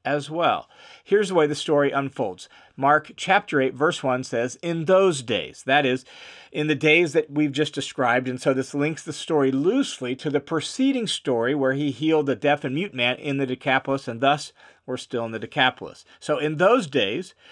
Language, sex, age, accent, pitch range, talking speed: English, male, 40-59, American, 135-180 Hz, 200 wpm